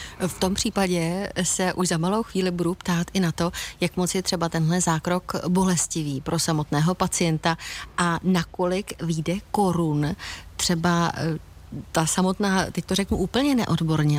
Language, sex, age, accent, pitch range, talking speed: Czech, female, 30-49, native, 165-195 Hz, 150 wpm